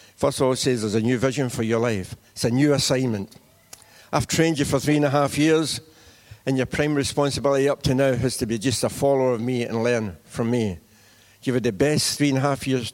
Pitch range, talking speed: 115-140 Hz, 245 wpm